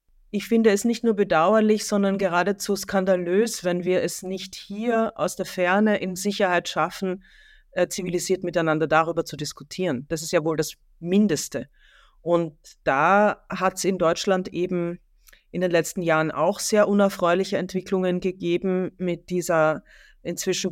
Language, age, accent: German, 40-59, German